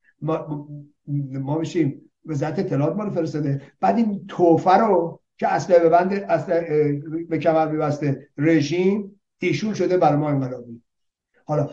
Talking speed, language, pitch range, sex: 125 wpm, Persian, 145-180 Hz, male